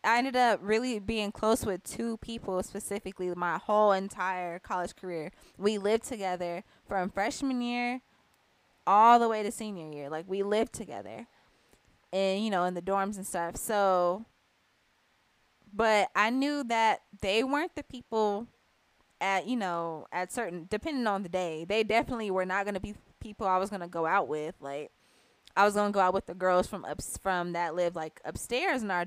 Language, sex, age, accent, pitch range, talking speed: English, female, 20-39, American, 180-230 Hz, 190 wpm